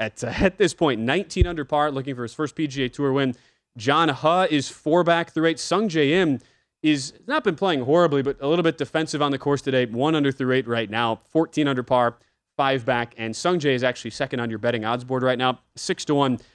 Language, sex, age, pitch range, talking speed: English, male, 20-39, 125-155 Hz, 240 wpm